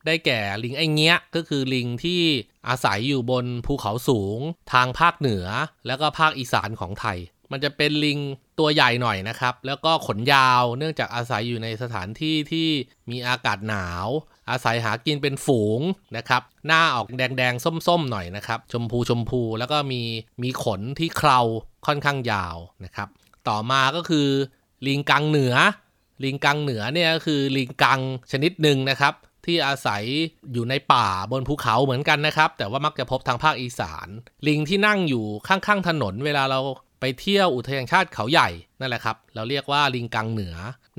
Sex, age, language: male, 20-39, Thai